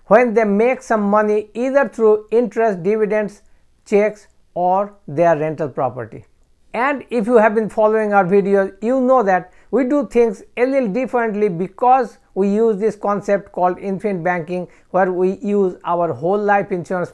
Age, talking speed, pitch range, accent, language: 60-79, 160 wpm, 180-225 Hz, Indian, English